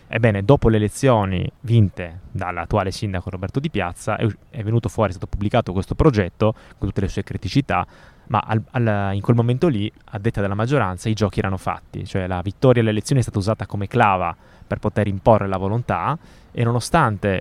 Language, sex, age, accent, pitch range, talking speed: Italian, male, 20-39, native, 100-120 Hz, 185 wpm